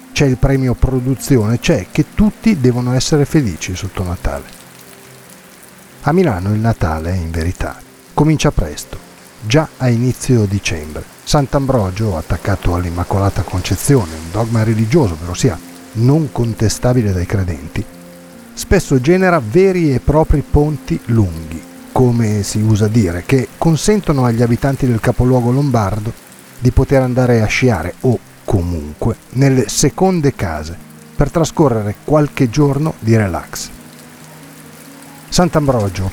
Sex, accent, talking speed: male, native, 120 wpm